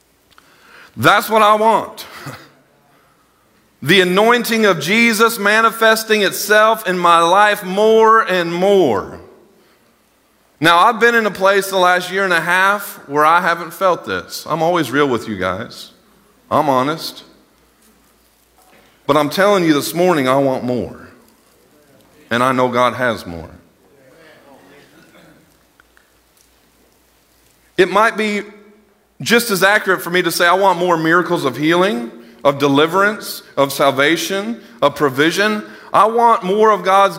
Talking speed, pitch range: 135 wpm, 155-210 Hz